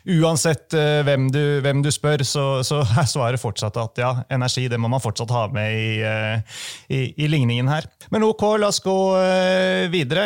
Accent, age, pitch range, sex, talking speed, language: Swedish, 30-49, 110-140 Hz, male, 180 wpm, English